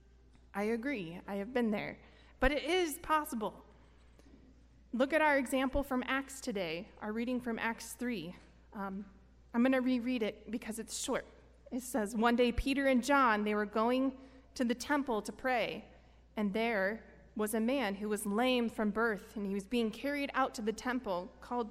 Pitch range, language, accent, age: 195-260 Hz, English, American, 20-39